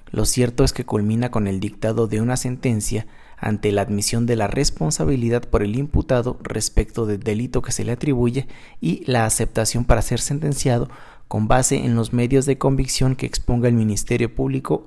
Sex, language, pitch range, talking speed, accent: male, Spanish, 110-130 Hz, 180 wpm, Mexican